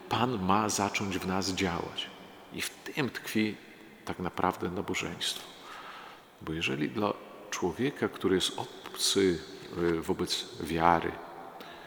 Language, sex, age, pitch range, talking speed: Polish, male, 40-59, 85-100 Hz, 110 wpm